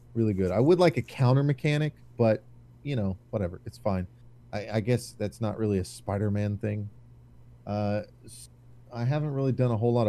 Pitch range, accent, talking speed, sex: 100-120 Hz, American, 185 wpm, male